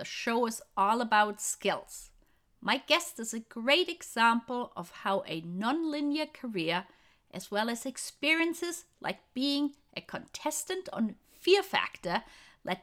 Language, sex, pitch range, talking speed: English, female, 200-290 Hz, 135 wpm